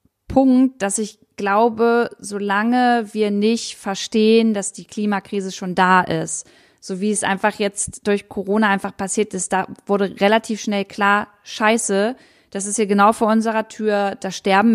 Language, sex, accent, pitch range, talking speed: German, female, German, 190-220 Hz, 160 wpm